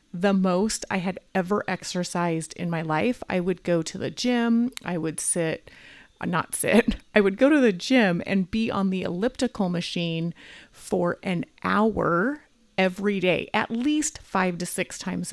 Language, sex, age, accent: English, female, 30-49, American